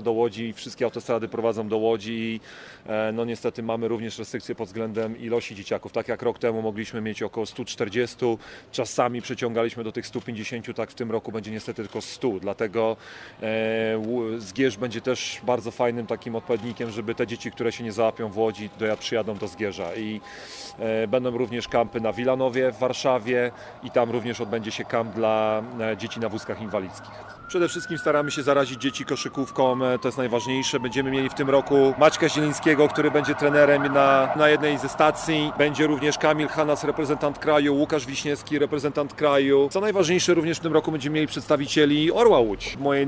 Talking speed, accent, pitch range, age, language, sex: 175 wpm, native, 115-140 Hz, 30-49, Polish, male